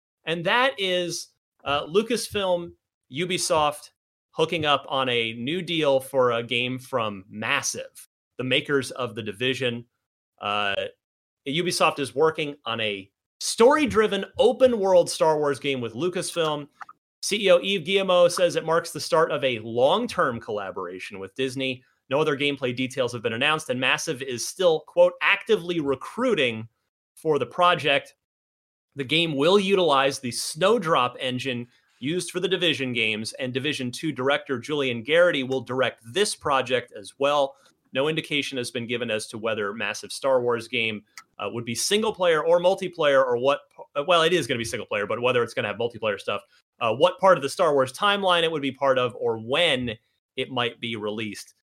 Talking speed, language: 170 wpm, English